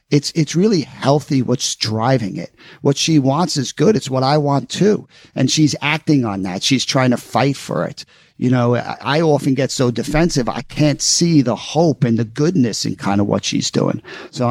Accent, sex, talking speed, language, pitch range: American, male, 205 wpm, English, 125-155 Hz